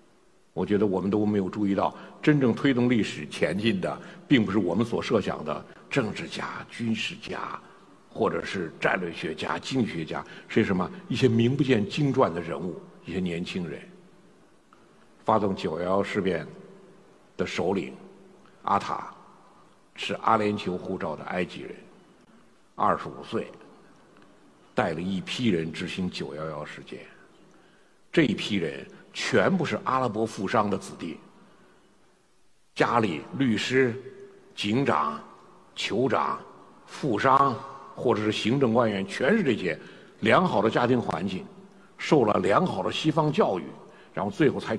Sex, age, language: male, 60-79, Chinese